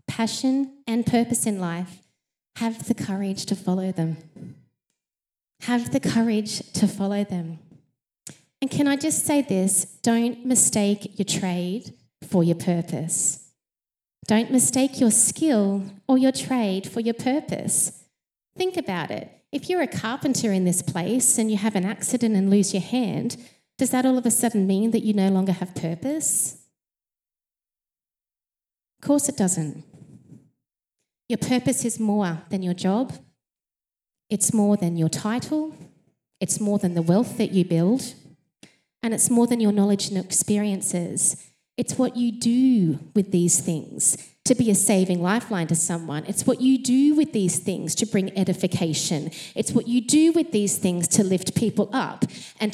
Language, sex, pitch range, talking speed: English, female, 185-250 Hz, 160 wpm